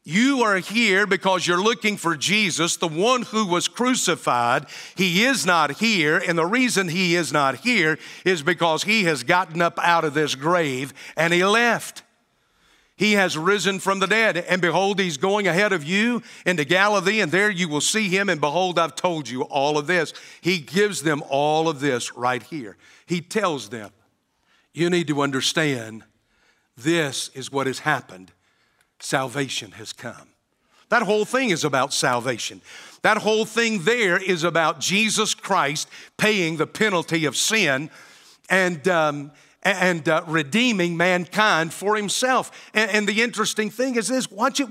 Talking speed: 170 wpm